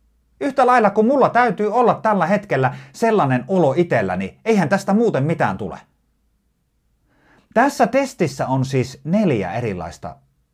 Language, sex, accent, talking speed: Finnish, male, native, 130 wpm